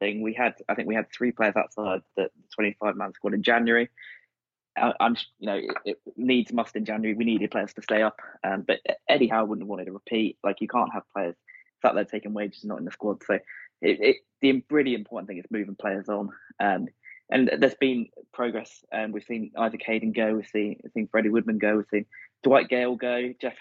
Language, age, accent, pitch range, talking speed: English, 20-39, British, 105-120 Hz, 225 wpm